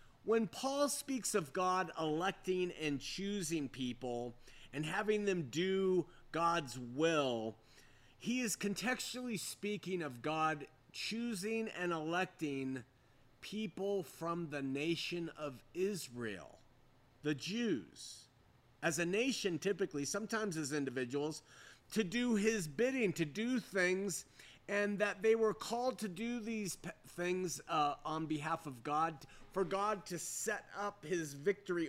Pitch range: 135-200 Hz